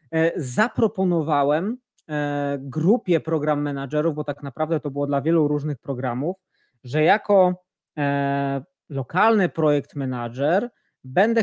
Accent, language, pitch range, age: native, Polish, 140-175 Hz, 20-39